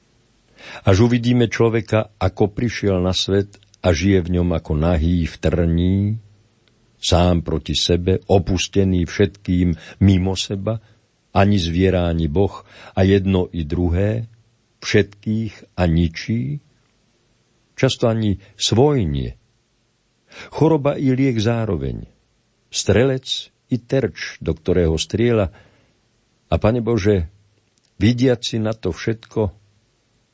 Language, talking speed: Slovak, 105 wpm